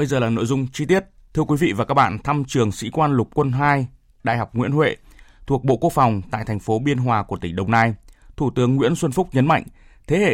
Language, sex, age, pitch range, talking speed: Vietnamese, male, 20-39, 115-150 Hz, 265 wpm